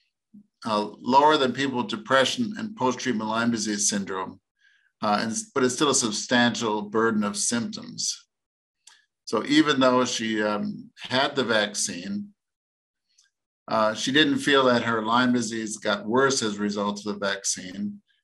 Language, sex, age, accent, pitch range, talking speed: English, male, 50-69, American, 110-135 Hz, 150 wpm